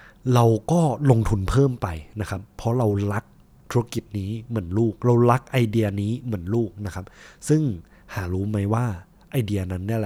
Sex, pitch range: male, 100-130 Hz